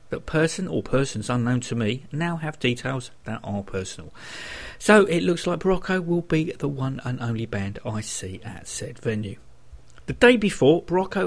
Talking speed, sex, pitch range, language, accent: 180 wpm, male, 115-165 Hz, English, British